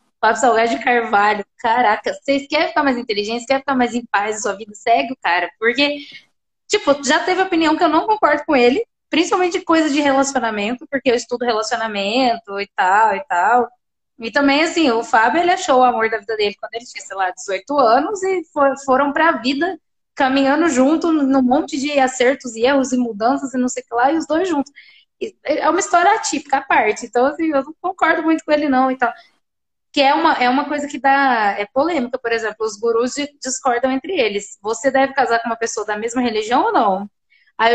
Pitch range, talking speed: 235-295 Hz, 210 wpm